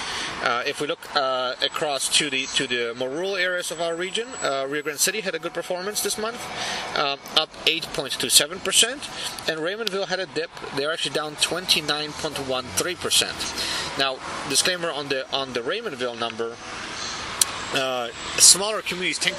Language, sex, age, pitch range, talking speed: English, male, 30-49, 130-165 Hz, 160 wpm